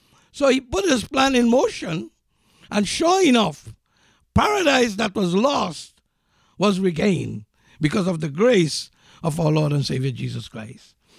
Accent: South African